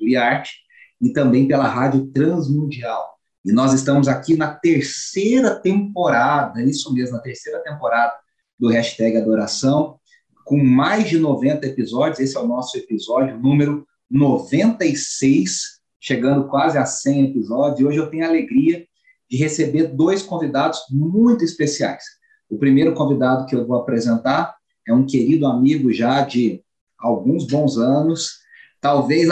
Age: 30-49